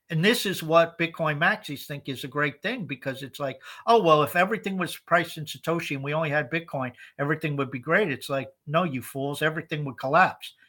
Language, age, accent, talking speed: English, 50-69, American, 220 wpm